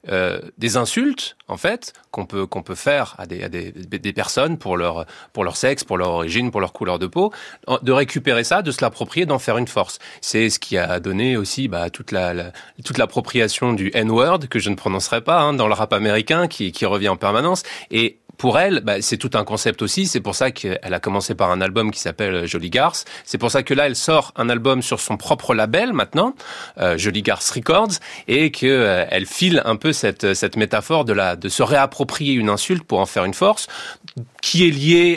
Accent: French